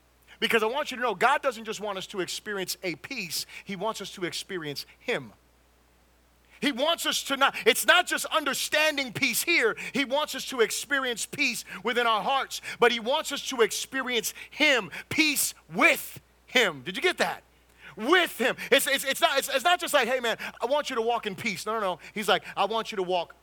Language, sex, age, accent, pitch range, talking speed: English, male, 30-49, American, 200-290 Hz, 220 wpm